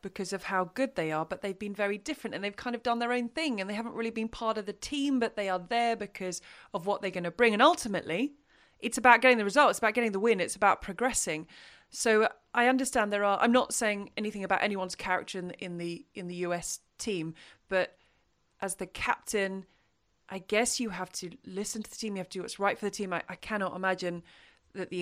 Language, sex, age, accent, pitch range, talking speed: English, female, 30-49, British, 185-235 Hz, 240 wpm